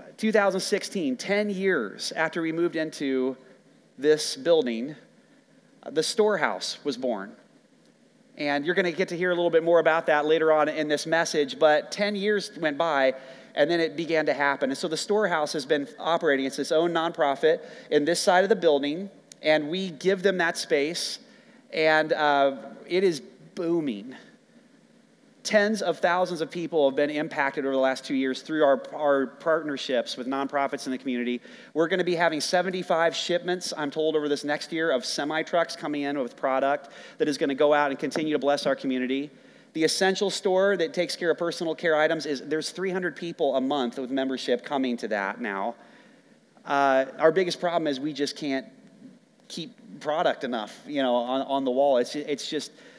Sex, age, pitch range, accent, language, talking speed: male, 30-49, 140-185 Hz, American, English, 185 wpm